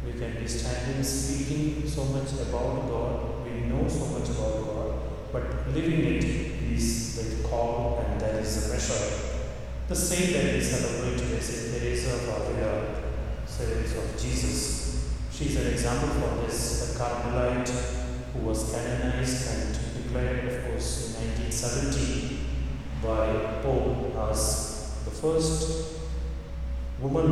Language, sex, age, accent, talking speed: English, male, 30-49, Indian, 135 wpm